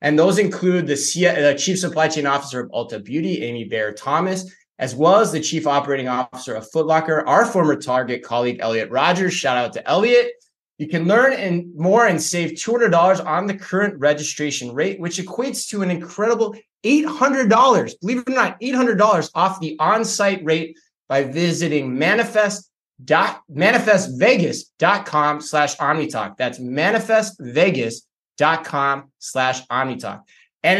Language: English